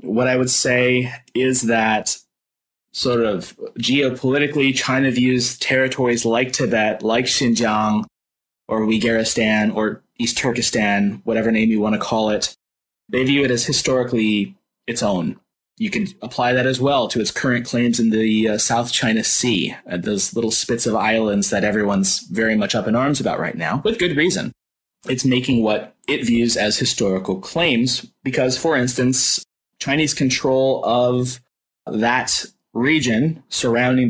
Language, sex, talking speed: English, male, 155 wpm